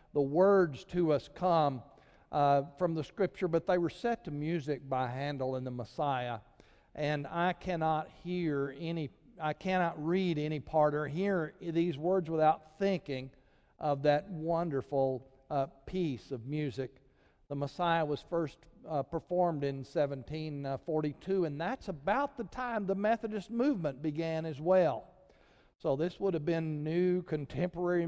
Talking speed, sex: 145 wpm, male